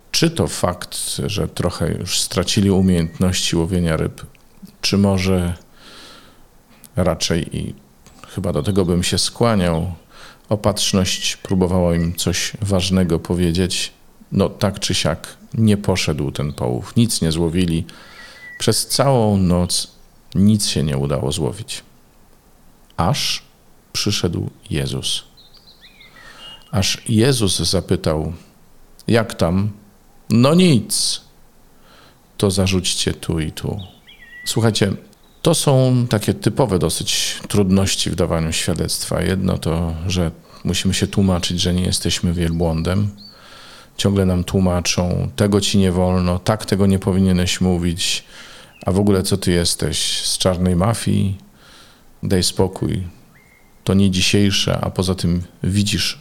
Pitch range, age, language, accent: 90-105 Hz, 40-59, Polish, native